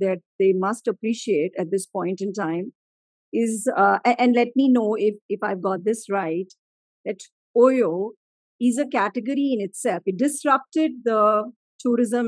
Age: 50-69